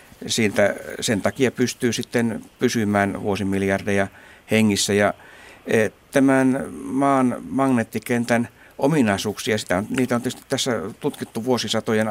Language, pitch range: Finnish, 100-115 Hz